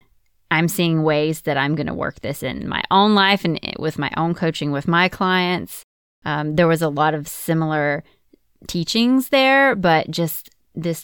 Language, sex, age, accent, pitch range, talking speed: English, female, 20-39, American, 150-185 Hz, 180 wpm